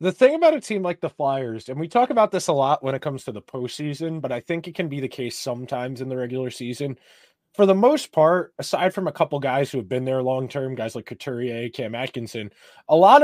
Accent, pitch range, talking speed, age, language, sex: American, 140-185 Hz, 255 wpm, 20-39, English, male